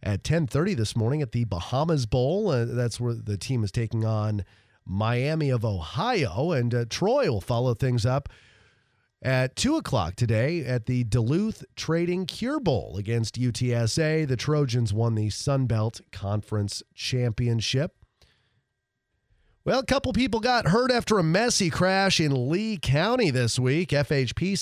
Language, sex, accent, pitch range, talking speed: English, male, American, 115-160 Hz, 150 wpm